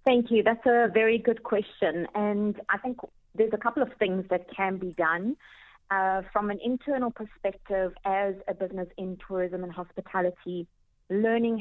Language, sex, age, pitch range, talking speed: English, female, 30-49, 180-225 Hz, 165 wpm